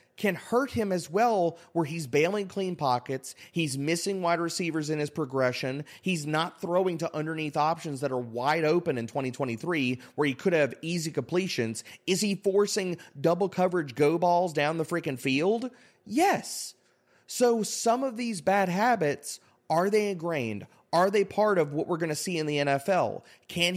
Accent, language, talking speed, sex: American, English, 175 wpm, male